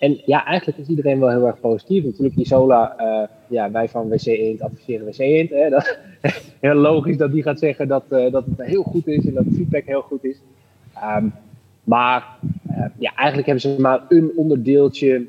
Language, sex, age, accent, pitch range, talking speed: Dutch, male, 20-39, Dutch, 120-140 Hz, 195 wpm